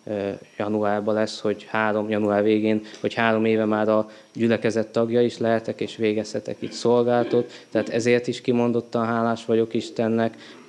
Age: 20-39